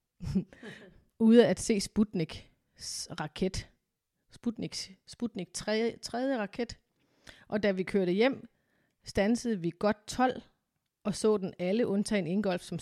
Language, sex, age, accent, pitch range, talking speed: Danish, female, 30-49, native, 175-220 Hz, 115 wpm